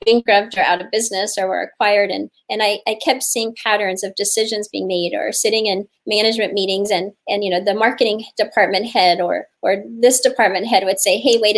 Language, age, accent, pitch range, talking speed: English, 30-49, American, 195-235 Hz, 210 wpm